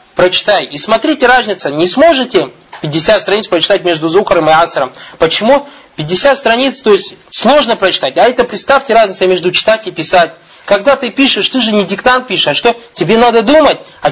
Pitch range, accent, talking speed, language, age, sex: 170-230 Hz, native, 180 wpm, Russian, 20-39, male